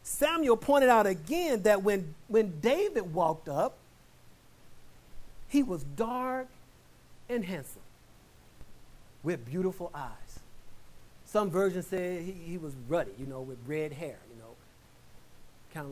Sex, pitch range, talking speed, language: male, 160-245 Hz, 125 wpm, Persian